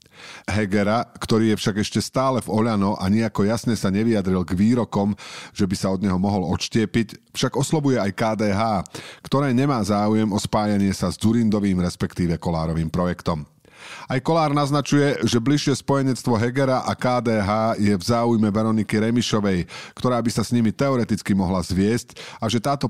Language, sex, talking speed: Slovak, male, 160 wpm